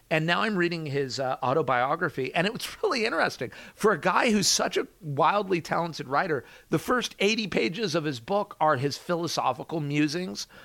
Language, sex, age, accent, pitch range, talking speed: English, male, 40-59, American, 140-180 Hz, 180 wpm